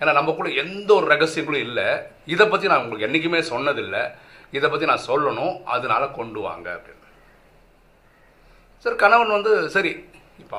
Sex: male